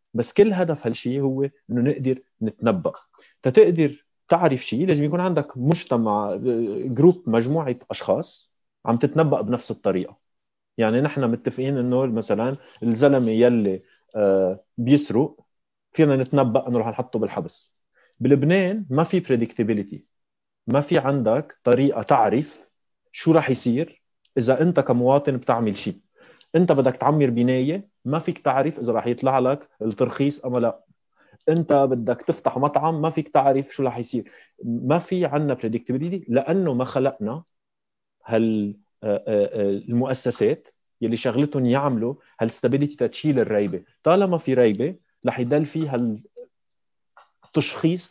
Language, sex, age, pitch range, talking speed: Arabic, male, 30-49, 120-150 Hz, 125 wpm